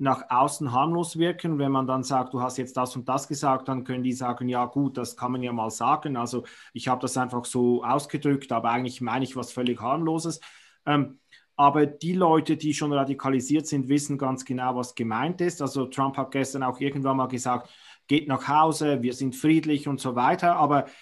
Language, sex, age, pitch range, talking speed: German, male, 30-49, 125-145 Hz, 210 wpm